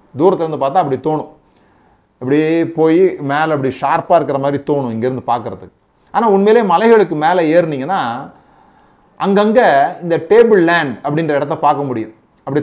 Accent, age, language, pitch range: native, 30-49, Tamil, 135-190 Hz